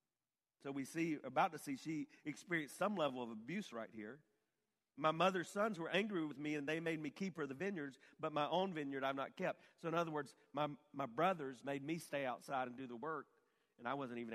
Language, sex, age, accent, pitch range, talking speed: English, male, 40-59, American, 140-205 Hz, 230 wpm